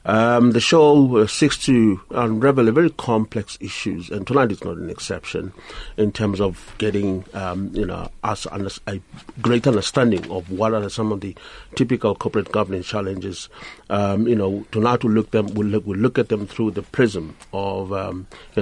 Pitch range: 100-115 Hz